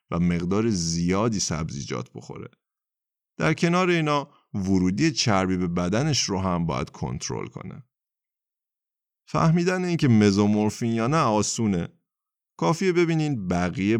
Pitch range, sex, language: 90-140 Hz, male, Persian